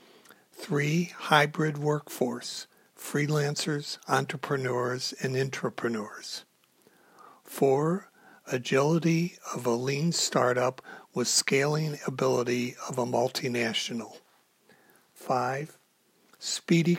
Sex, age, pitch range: male, 60-79, 130-150 Hz